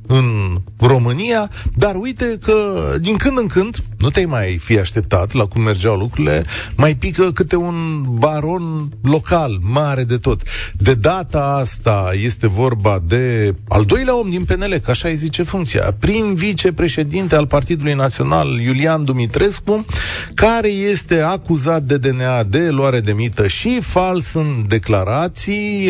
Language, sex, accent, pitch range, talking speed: Romanian, male, native, 110-175 Hz, 145 wpm